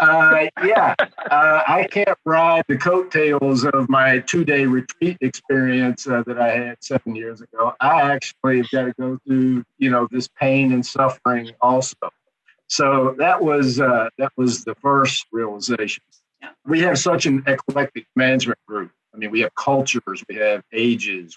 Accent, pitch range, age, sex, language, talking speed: American, 110-135 Hz, 50-69, male, English, 165 wpm